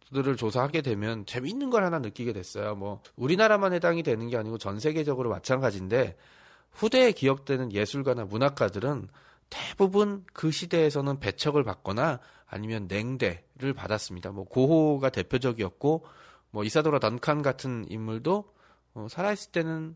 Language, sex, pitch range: Korean, male, 115-160 Hz